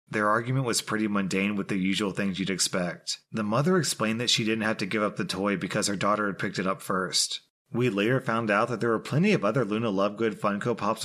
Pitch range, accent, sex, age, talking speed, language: 100-135 Hz, American, male, 30-49, 245 wpm, English